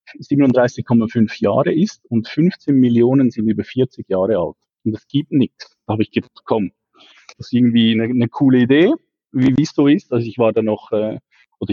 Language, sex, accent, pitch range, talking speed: German, male, Austrian, 110-130 Hz, 195 wpm